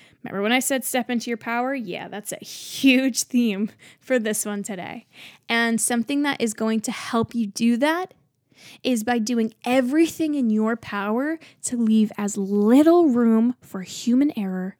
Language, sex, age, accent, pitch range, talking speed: English, female, 10-29, American, 205-260 Hz, 170 wpm